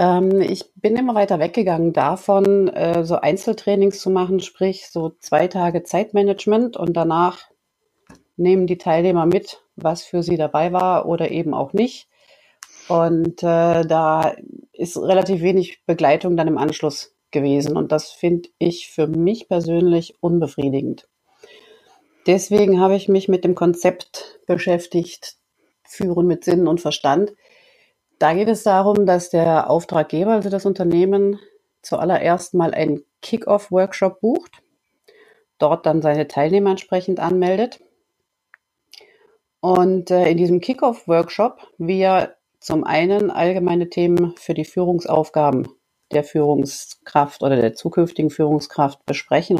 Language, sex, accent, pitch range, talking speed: German, female, German, 165-200 Hz, 120 wpm